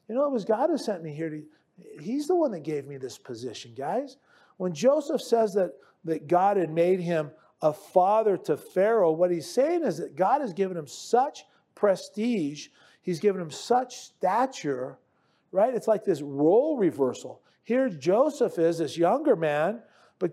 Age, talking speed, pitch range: 40-59, 180 wpm, 160-235 Hz